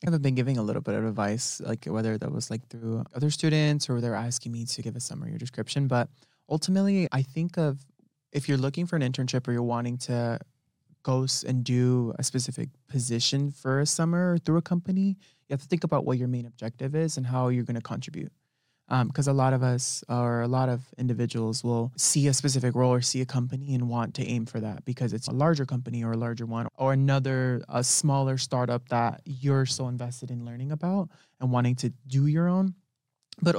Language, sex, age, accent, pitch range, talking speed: English, male, 20-39, American, 120-140 Hz, 220 wpm